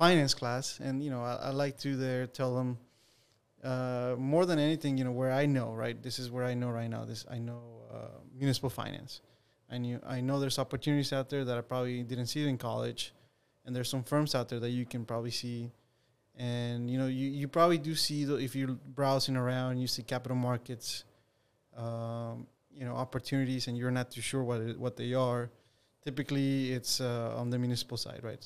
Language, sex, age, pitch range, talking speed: English, male, 20-39, 120-135 Hz, 210 wpm